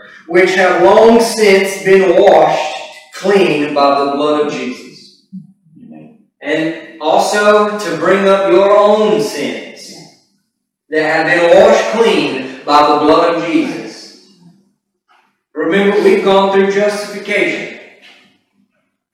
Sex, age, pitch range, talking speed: male, 40-59, 175-210 Hz, 110 wpm